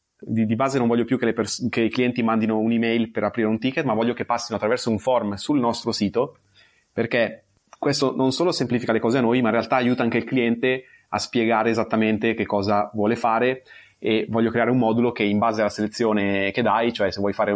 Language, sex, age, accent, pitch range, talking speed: Italian, male, 30-49, native, 110-125 Hz, 230 wpm